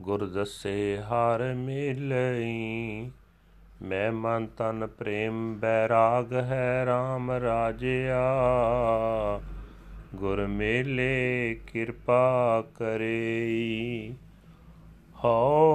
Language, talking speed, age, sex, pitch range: Punjabi, 70 wpm, 30-49, male, 110-130 Hz